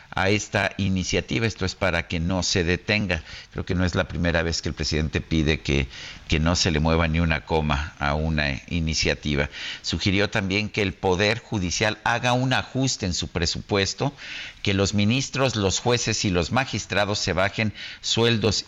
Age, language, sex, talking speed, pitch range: 50-69, Spanish, male, 180 wpm, 80-100 Hz